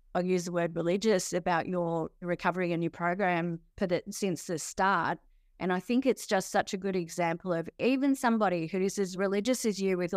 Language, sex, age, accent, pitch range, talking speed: English, female, 20-39, Australian, 175-215 Hz, 205 wpm